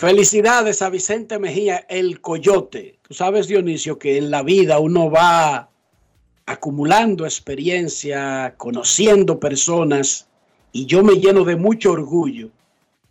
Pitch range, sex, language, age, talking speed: 145-195 Hz, male, Spanish, 60-79, 120 wpm